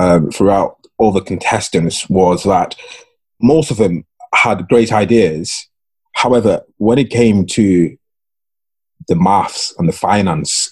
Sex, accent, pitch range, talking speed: male, British, 90-115 Hz, 130 wpm